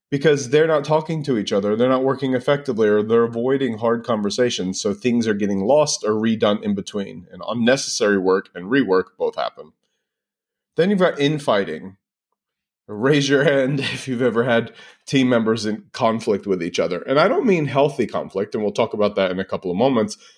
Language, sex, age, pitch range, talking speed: English, male, 30-49, 110-155 Hz, 195 wpm